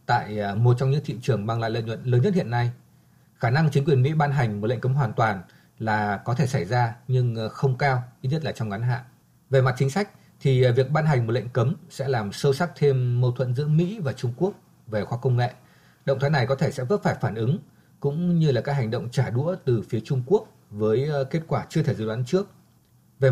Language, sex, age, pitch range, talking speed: Vietnamese, male, 20-39, 120-145 Hz, 250 wpm